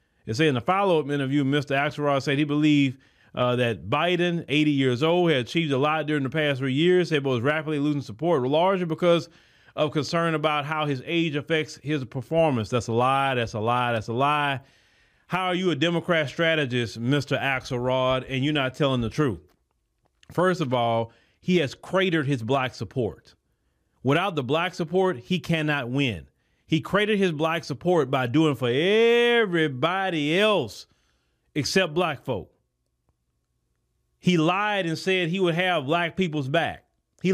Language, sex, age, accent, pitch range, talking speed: English, male, 30-49, American, 125-180 Hz, 165 wpm